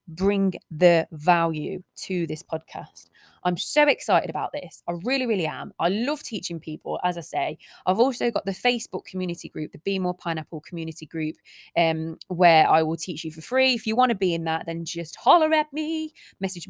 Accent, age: British, 20-39